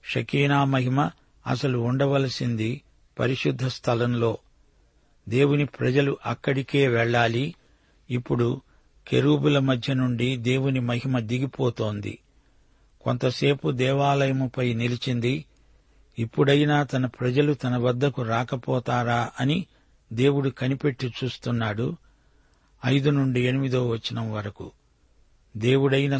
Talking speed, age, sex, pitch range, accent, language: 80 wpm, 50-69, male, 120-135 Hz, native, Telugu